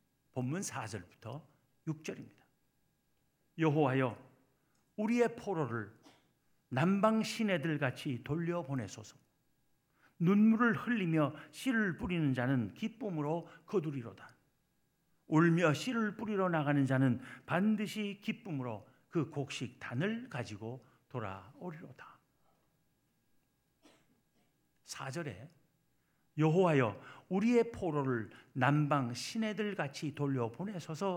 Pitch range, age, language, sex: 135-195 Hz, 50-69, Korean, male